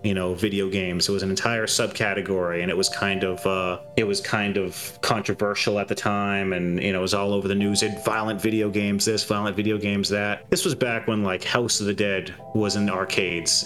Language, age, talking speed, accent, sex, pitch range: English, 30-49, 230 wpm, American, male, 100-125 Hz